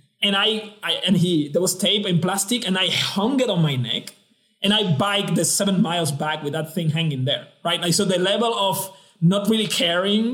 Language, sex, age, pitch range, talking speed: English, male, 20-39, 165-205 Hz, 220 wpm